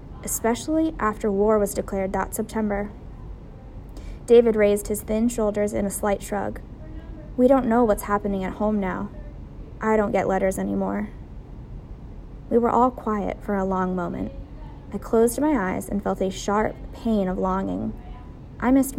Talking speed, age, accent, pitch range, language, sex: 160 wpm, 20-39, American, 195-265 Hz, English, female